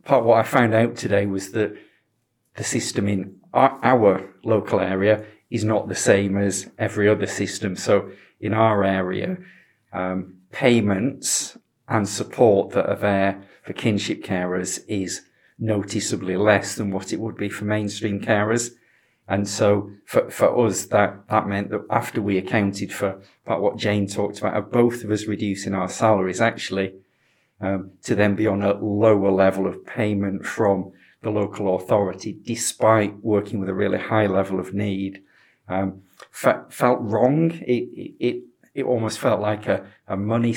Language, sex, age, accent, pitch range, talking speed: English, male, 40-59, British, 95-110 Hz, 165 wpm